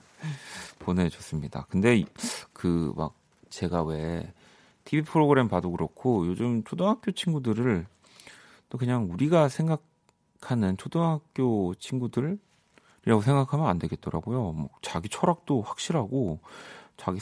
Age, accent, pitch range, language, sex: 40-59, native, 90-130 Hz, Korean, male